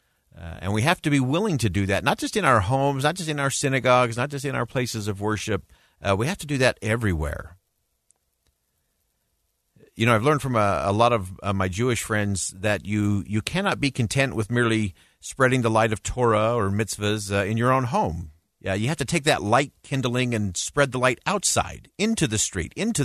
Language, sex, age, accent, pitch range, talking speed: English, male, 50-69, American, 90-120 Hz, 220 wpm